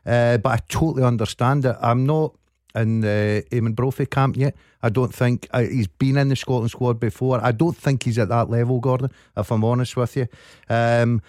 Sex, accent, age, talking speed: male, British, 50-69, 215 wpm